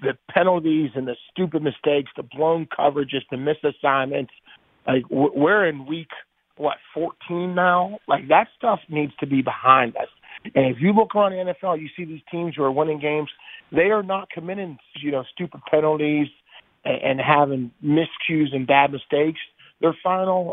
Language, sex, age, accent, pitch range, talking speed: English, male, 40-59, American, 140-170 Hz, 165 wpm